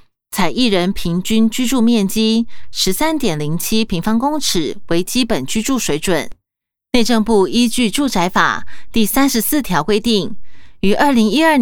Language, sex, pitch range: Chinese, female, 180-250 Hz